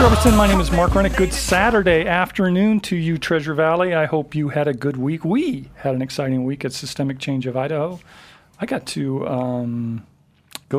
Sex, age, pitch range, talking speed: male, 40-59, 130-170 Hz, 195 wpm